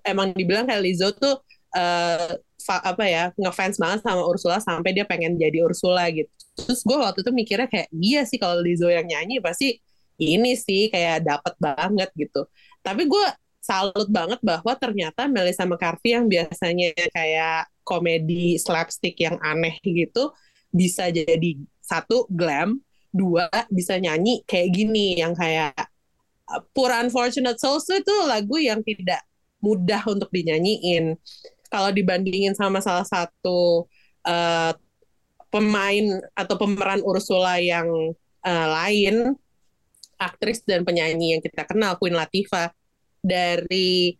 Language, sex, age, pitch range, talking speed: Indonesian, female, 20-39, 170-215 Hz, 130 wpm